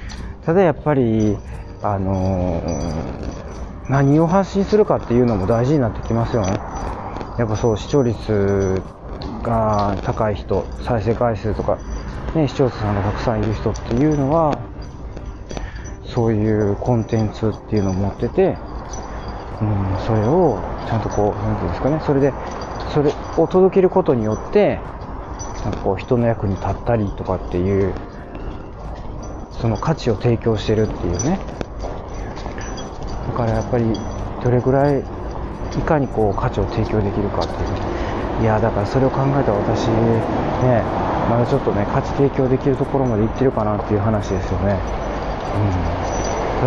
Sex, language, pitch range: male, Japanese, 95-120 Hz